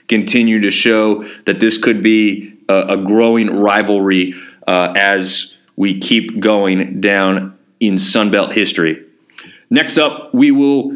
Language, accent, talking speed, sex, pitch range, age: English, American, 130 wpm, male, 105-135 Hz, 30-49